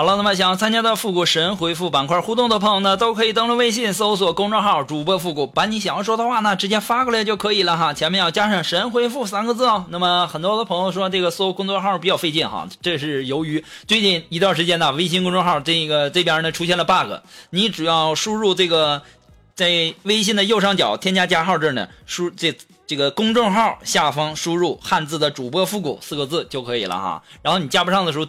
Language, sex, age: Chinese, male, 20-39